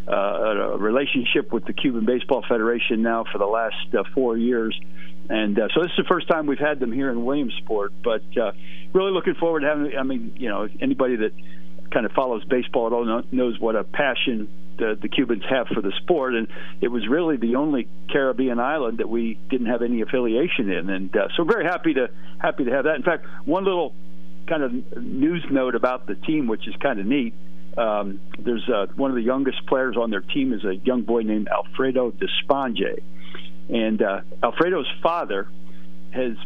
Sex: male